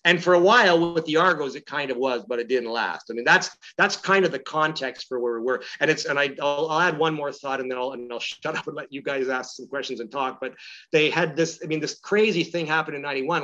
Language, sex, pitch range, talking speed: English, male, 125-160 Hz, 290 wpm